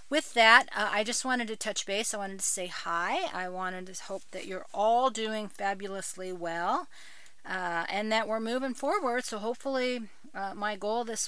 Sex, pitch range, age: female, 175-220 Hz, 40-59